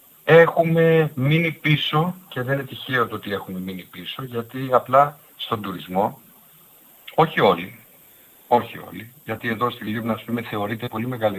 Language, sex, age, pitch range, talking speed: Greek, male, 50-69, 95-125 Hz, 140 wpm